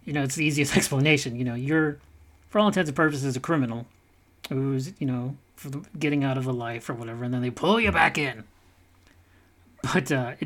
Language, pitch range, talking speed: English, 100-150 Hz, 210 wpm